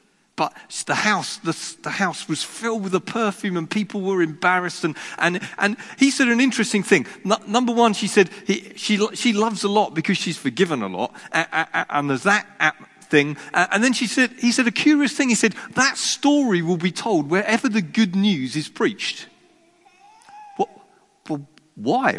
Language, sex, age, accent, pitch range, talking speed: English, male, 40-59, British, 160-225 Hz, 180 wpm